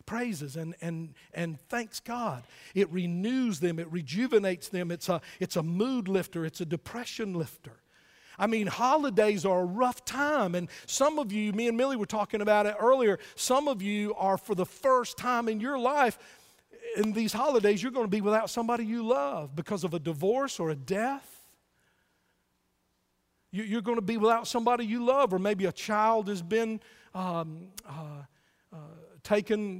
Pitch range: 185-250 Hz